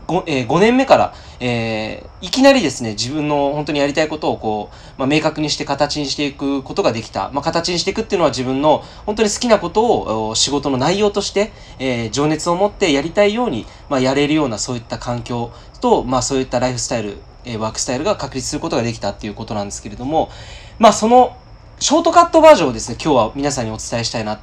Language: Japanese